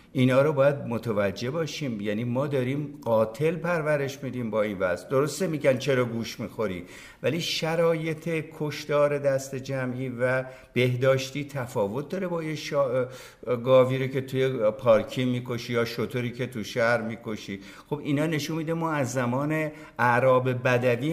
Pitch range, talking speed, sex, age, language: 120-150 Hz, 150 wpm, male, 60-79, Persian